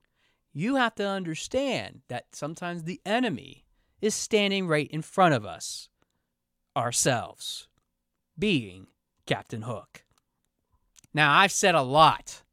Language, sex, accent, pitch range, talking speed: English, male, American, 125-190 Hz, 115 wpm